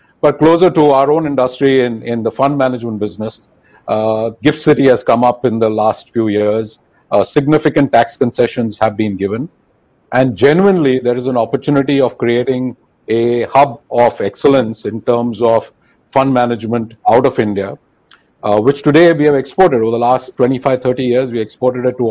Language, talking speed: English, 180 wpm